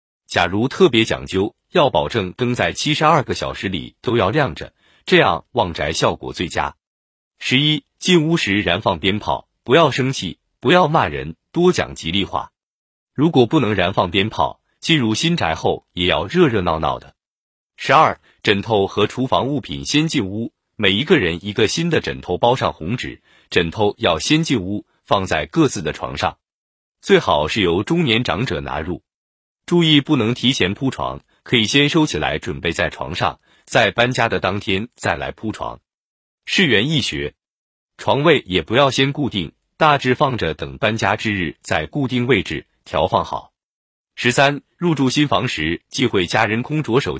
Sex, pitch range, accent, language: male, 95-145 Hz, native, Chinese